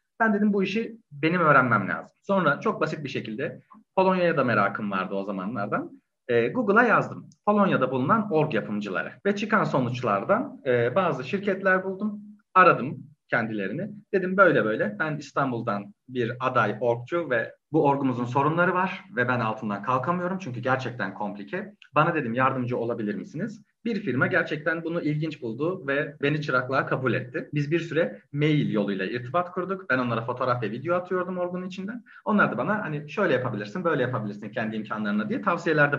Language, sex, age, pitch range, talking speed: Turkish, male, 40-59, 125-185 Hz, 160 wpm